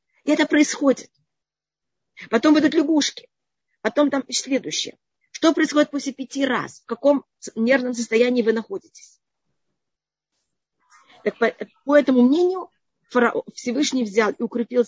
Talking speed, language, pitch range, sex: 120 wpm, Russian, 230-285 Hz, female